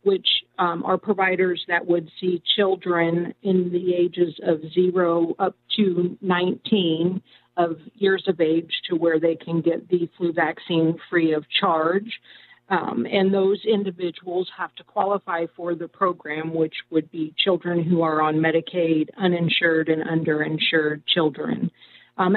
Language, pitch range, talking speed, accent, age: English, 165-190 Hz, 145 wpm, American, 50-69